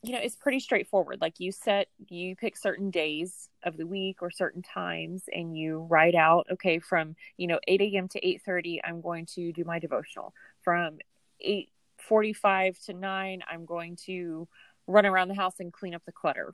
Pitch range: 170-205 Hz